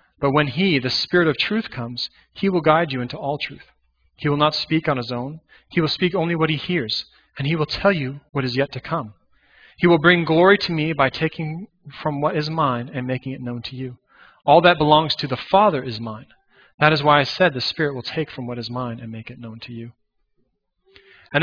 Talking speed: 240 wpm